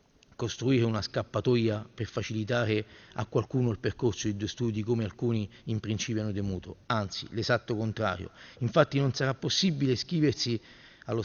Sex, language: male, Italian